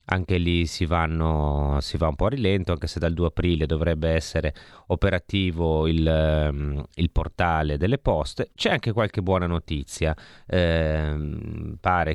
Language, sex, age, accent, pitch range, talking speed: Italian, male, 30-49, native, 80-90 Hz, 150 wpm